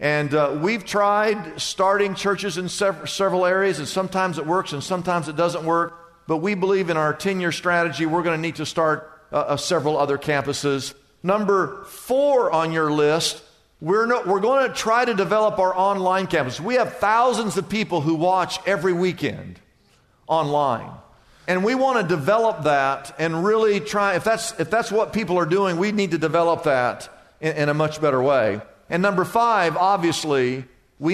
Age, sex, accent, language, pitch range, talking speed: 50-69, male, American, English, 145-195 Hz, 185 wpm